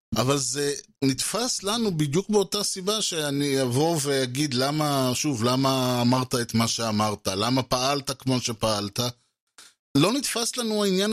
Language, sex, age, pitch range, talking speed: Hebrew, male, 30-49, 110-165 Hz, 135 wpm